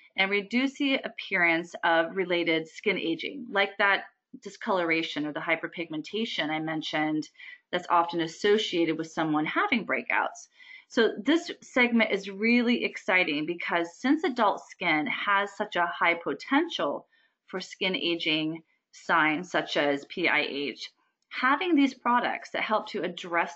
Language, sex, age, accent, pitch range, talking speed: English, female, 30-49, American, 170-225 Hz, 130 wpm